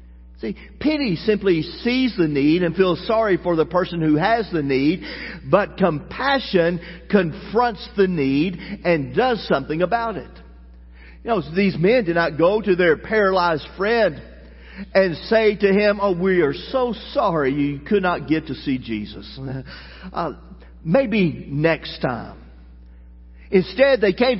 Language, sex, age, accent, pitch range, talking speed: English, male, 50-69, American, 140-210 Hz, 150 wpm